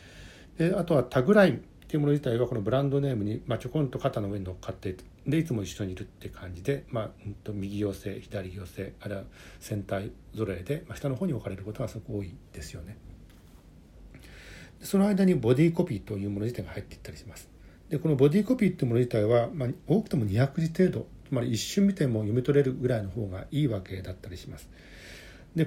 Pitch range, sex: 100-135 Hz, male